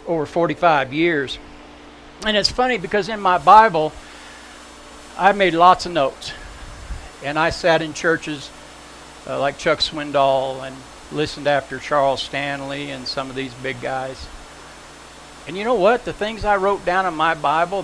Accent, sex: American, male